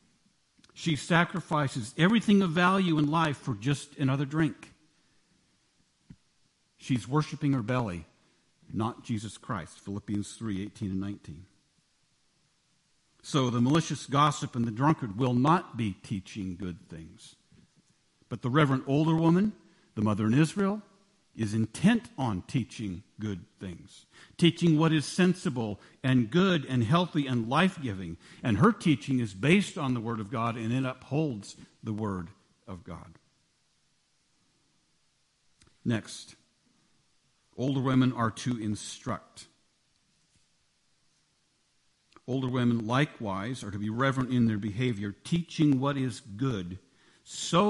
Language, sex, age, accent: English, male, 50-69, American